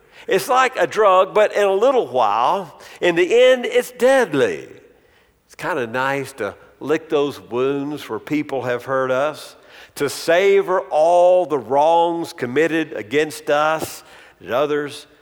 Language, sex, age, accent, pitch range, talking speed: English, male, 50-69, American, 140-200 Hz, 145 wpm